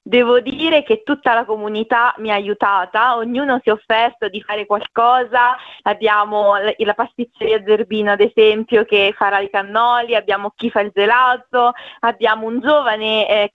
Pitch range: 210-250 Hz